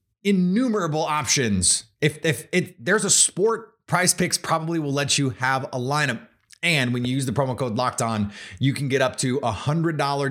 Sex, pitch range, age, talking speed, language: male, 125-160 Hz, 30-49, 200 wpm, English